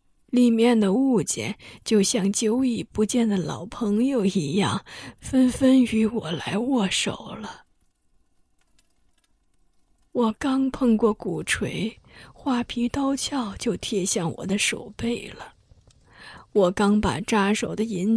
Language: Chinese